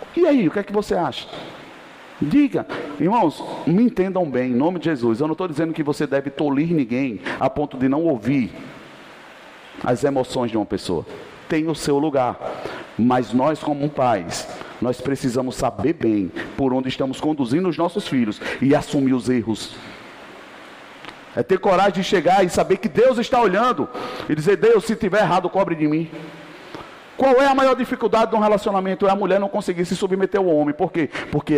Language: Portuguese